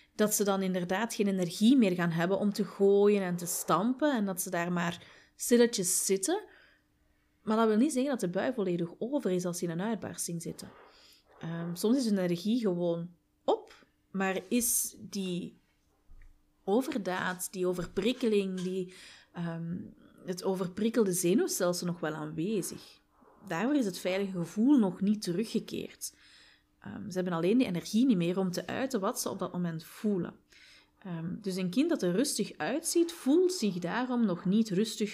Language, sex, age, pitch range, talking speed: Dutch, female, 30-49, 175-225 Hz, 165 wpm